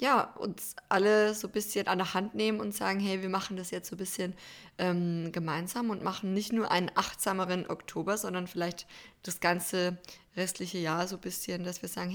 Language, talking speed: German, 205 wpm